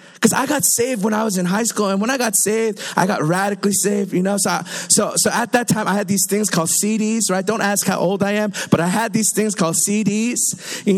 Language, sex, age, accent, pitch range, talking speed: English, male, 20-39, American, 190-230 Hz, 270 wpm